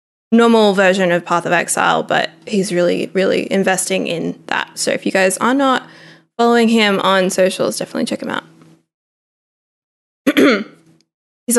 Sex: female